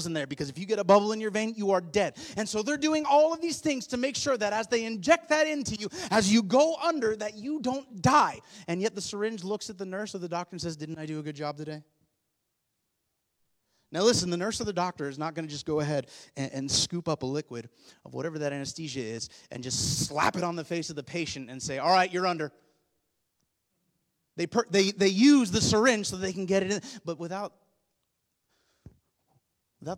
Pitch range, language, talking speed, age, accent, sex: 120-195 Hz, English, 230 wpm, 30-49, American, male